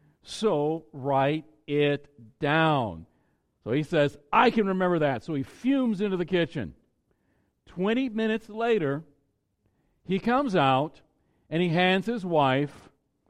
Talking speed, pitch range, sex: 125 wpm, 135-180 Hz, male